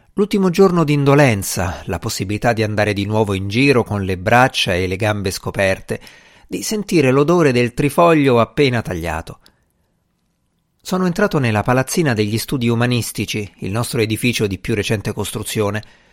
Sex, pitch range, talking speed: male, 105-150 Hz, 145 wpm